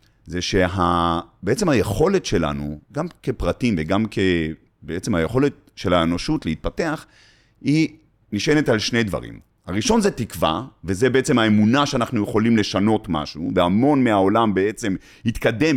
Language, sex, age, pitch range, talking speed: Hebrew, male, 30-49, 90-125 Hz, 125 wpm